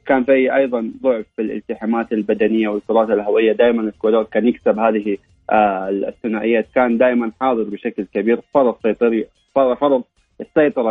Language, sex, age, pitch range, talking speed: English, male, 20-39, 110-135 Hz, 145 wpm